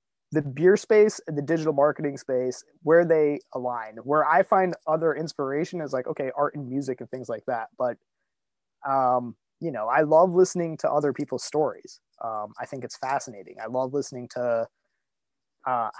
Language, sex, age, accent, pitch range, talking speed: English, male, 20-39, American, 125-165 Hz, 175 wpm